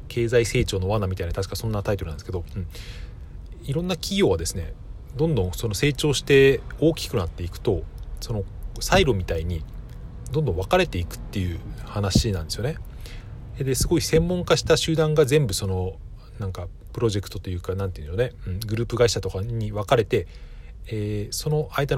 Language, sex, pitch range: Japanese, male, 90-120 Hz